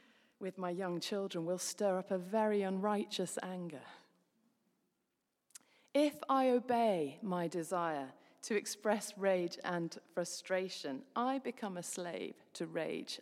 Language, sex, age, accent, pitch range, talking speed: English, female, 40-59, British, 180-255 Hz, 125 wpm